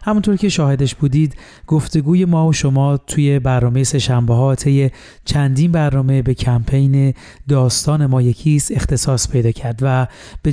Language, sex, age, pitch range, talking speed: Persian, male, 30-49, 130-150 Hz, 125 wpm